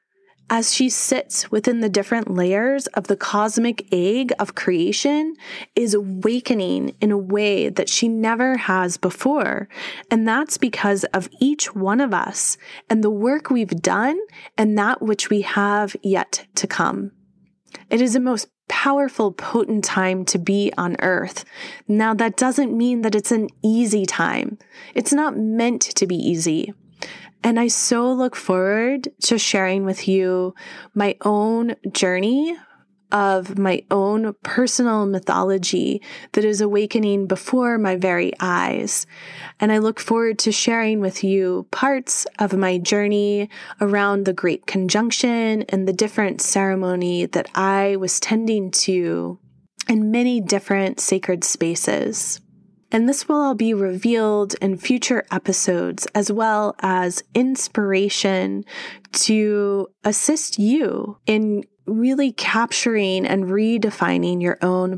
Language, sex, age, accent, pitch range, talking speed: English, female, 20-39, American, 190-235 Hz, 135 wpm